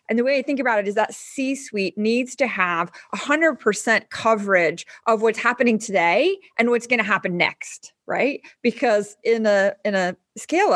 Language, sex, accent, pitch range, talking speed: English, female, American, 185-230 Hz, 185 wpm